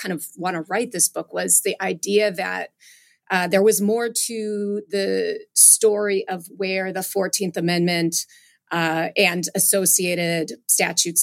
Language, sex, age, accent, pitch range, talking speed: English, female, 30-49, American, 170-200 Hz, 145 wpm